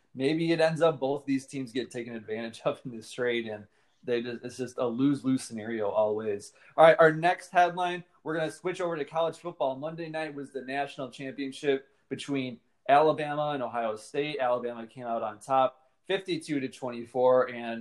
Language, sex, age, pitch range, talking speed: English, male, 20-39, 125-160 Hz, 190 wpm